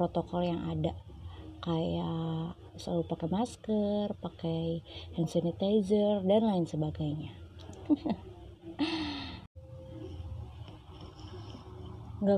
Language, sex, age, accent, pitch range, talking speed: Indonesian, female, 20-39, native, 160-190 Hz, 70 wpm